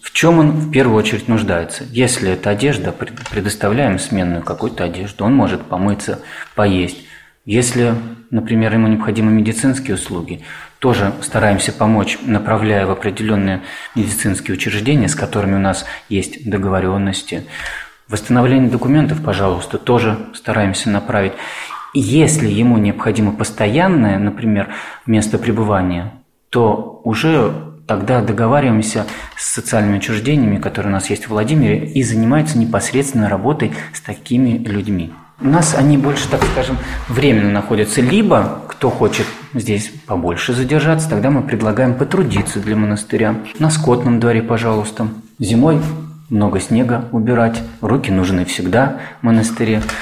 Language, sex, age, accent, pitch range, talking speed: Russian, male, 30-49, native, 100-130 Hz, 125 wpm